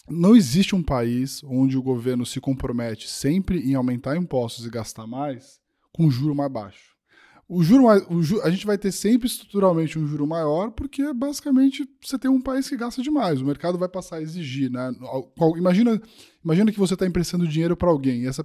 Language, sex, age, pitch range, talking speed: English, male, 10-29, 130-180 Hz, 190 wpm